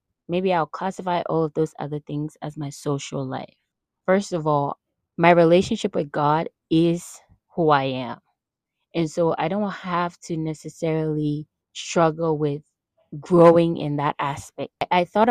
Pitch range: 140-160 Hz